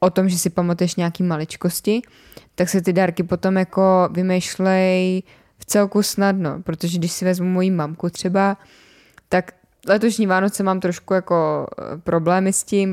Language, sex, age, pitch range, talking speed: Czech, female, 20-39, 165-185 Hz, 155 wpm